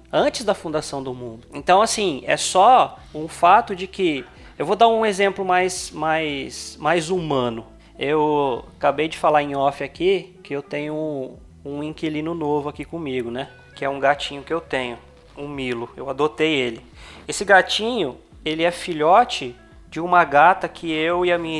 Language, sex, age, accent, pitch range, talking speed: Portuguese, male, 20-39, Brazilian, 145-215 Hz, 170 wpm